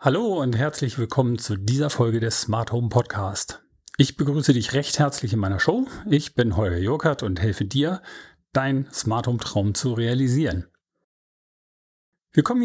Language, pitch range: German, 115-150 Hz